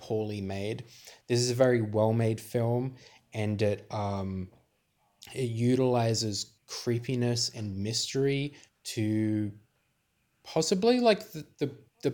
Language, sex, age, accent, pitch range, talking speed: English, male, 20-39, Australian, 110-130 Hz, 110 wpm